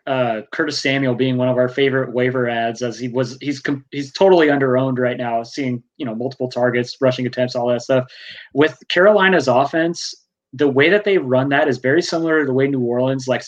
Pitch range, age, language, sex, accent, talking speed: 130-165 Hz, 20-39, English, male, American, 210 wpm